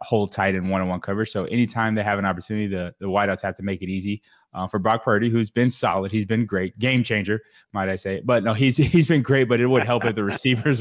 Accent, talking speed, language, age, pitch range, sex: American, 260 wpm, English, 20-39, 95-115 Hz, male